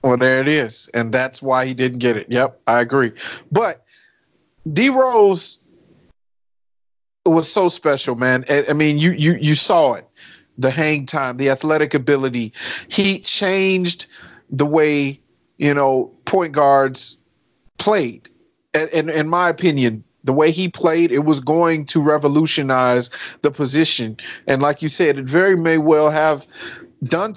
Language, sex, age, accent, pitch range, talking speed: English, male, 40-59, American, 135-175 Hz, 150 wpm